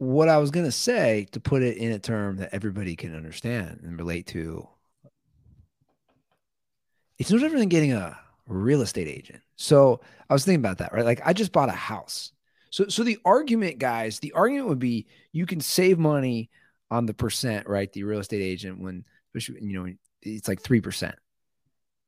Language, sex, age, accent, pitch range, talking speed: English, male, 30-49, American, 105-155 Hz, 185 wpm